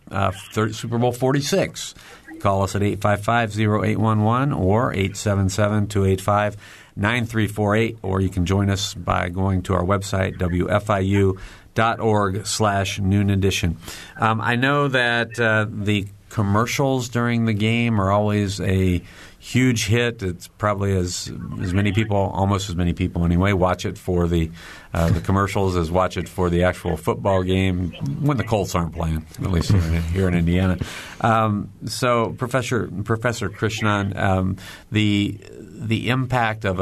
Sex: male